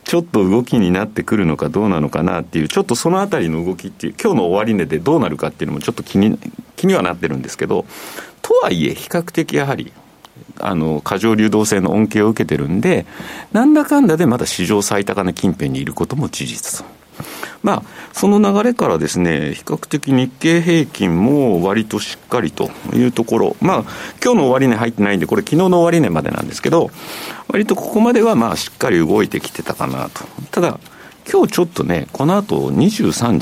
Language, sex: Japanese, male